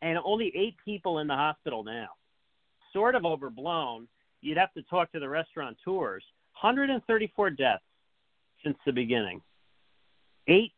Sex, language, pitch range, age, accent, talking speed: male, English, 130-160 Hz, 40-59, American, 135 wpm